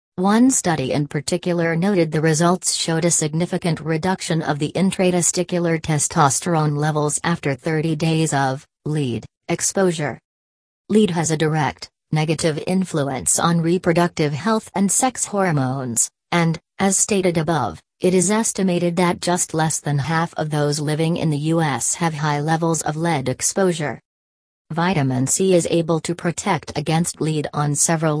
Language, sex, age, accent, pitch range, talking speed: English, female, 40-59, American, 150-175 Hz, 145 wpm